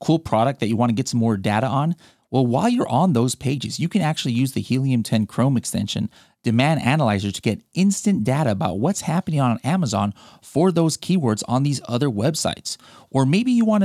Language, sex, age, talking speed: English, male, 30-49, 205 wpm